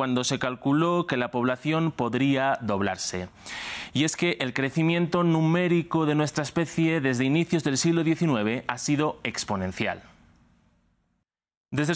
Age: 30-49